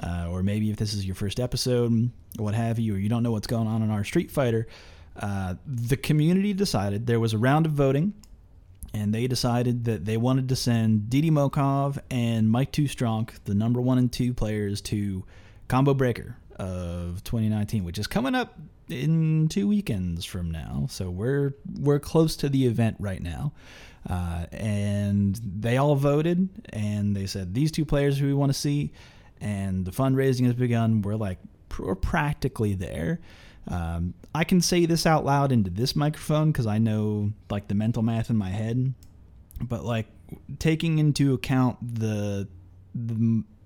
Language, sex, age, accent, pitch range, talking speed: English, male, 30-49, American, 100-140 Hz, 180 wpm